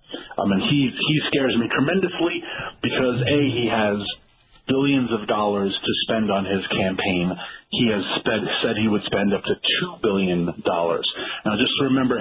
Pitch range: 100-130 Hz